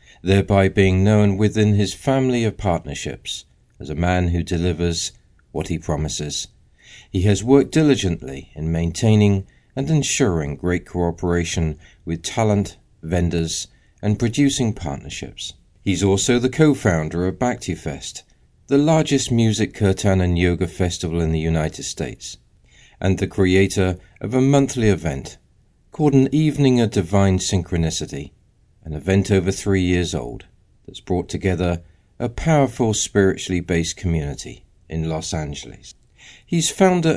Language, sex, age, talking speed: English, male, 50-69, 130 wpm